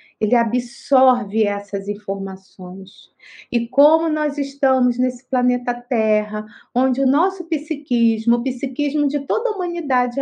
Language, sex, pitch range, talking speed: Portuguese, female, 215-275 Hz, 125 wpm